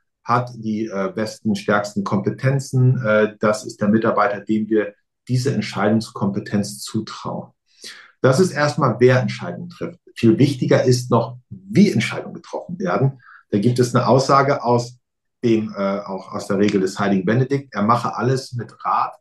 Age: 50-69